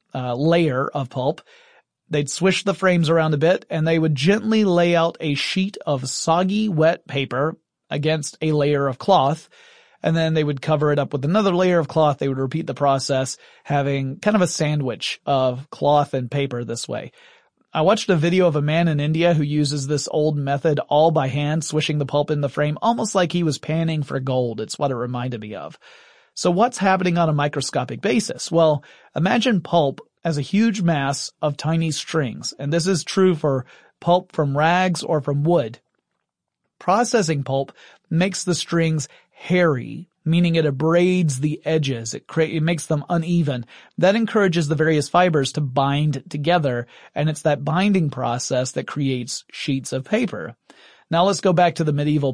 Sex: male